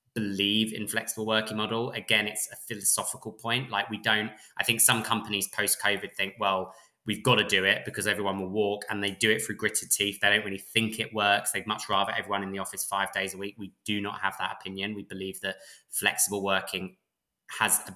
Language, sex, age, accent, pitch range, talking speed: English, male, 20-39, British, 100-115 Hz, 225 wpm